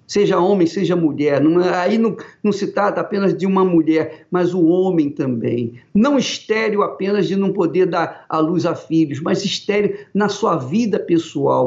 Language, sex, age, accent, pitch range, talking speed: Portuguese, male, 50-69, Brazilian, 165-255 Hz, 175 wpm